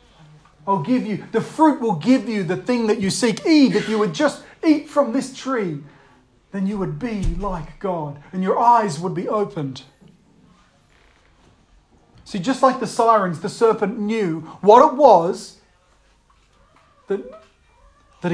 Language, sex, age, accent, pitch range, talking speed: English, male, 40-59, Australian, 190-275 Hz, 155 wpm